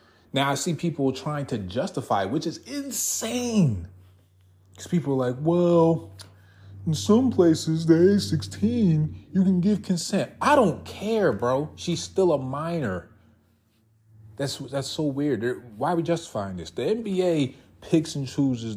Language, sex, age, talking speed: English, male, 30-49, 155 wpm